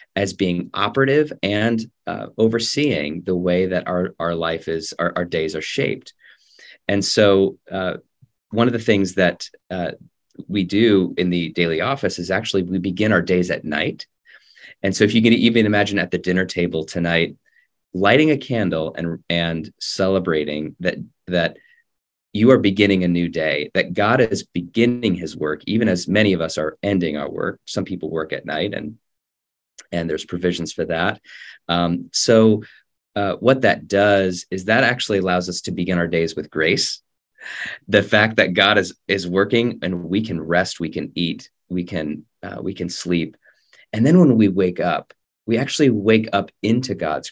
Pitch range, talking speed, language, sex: 85-110 Hz, 180 wpm, English, male